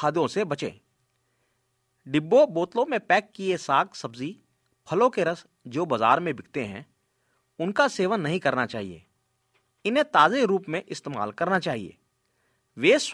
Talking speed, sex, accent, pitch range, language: 90 wpm, male, native, 130-215 Hz, Hindi